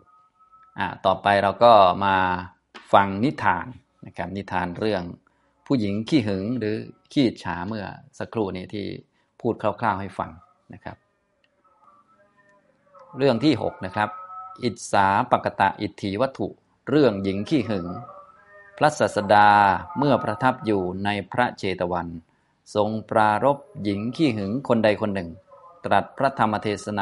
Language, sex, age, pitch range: Thai, male, 20-39, 95-120 Hz